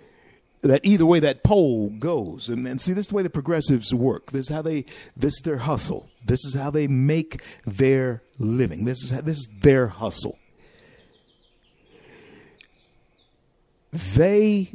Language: English